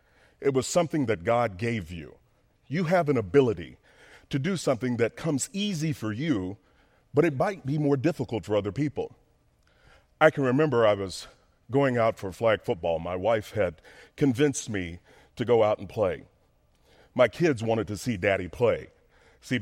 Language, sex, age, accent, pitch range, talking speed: English, male, 40-59, American, 105-150 Hz, 170 wpm